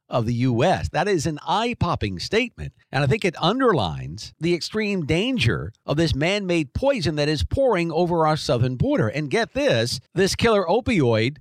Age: 50-69